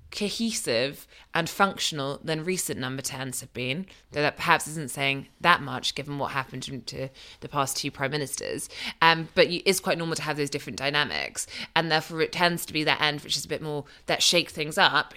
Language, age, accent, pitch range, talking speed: English, 20-39, British, 145-190 Hz, 205 wpm